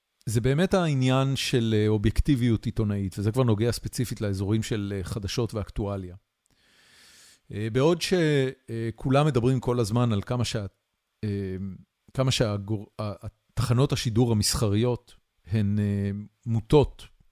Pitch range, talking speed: 105-130 Hz, 95 wpm